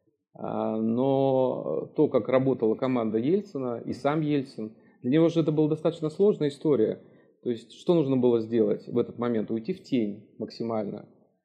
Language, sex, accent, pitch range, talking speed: Russian, male, native, 115-140 Hz, 155 wpm